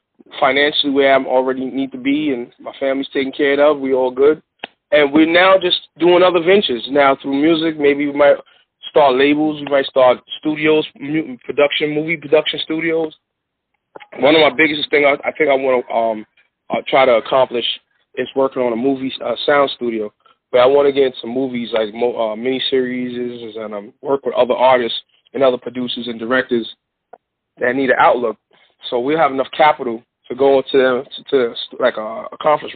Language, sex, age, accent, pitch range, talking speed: English, male, 30-49, American, 125-150 Hz, 190 wpm